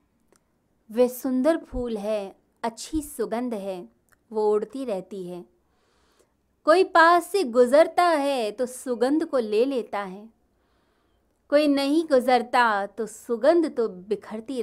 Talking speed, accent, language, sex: 120 wpm, native, Hindi, female